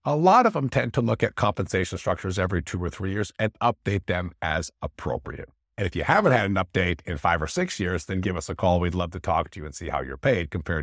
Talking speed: 270 wpm